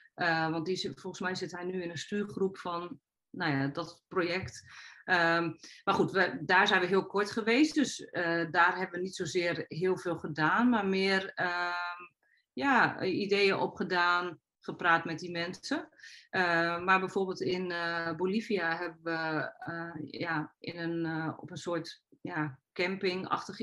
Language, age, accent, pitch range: Dutch, 40-59, Dutch, 160-185 Hz